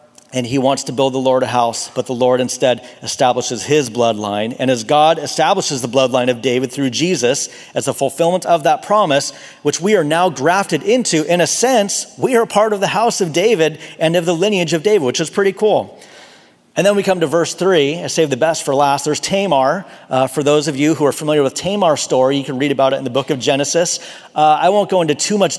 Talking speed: 240 wpm